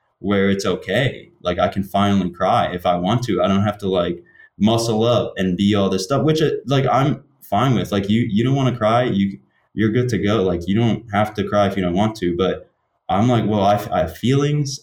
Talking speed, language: 245 wpm, English